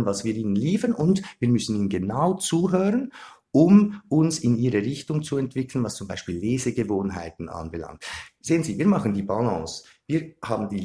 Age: 50-69